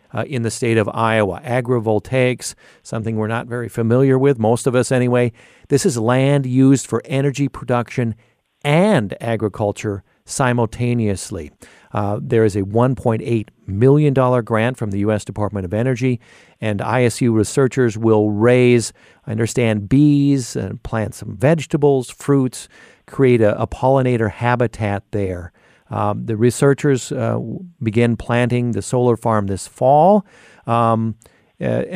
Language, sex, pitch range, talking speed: English, male, 110-135 Hz, 135 wpm